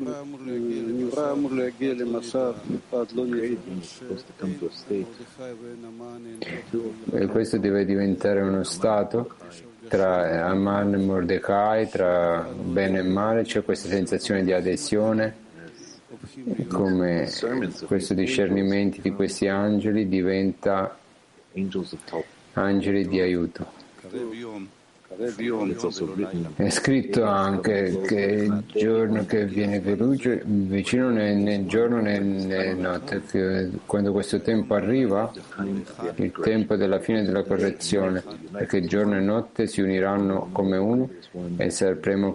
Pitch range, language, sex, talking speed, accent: 95-115 Hz, Italian, male, 95 wpm, native